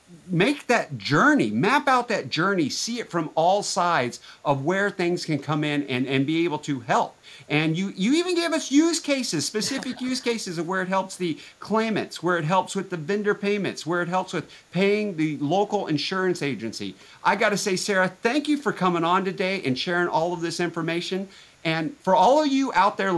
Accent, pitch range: American, 135-195 Hz